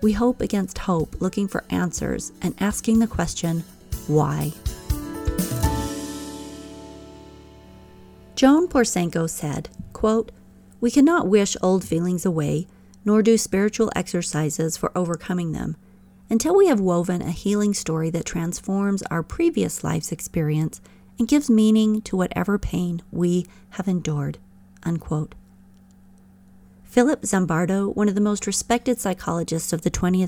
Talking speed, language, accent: 125 wpm, English, American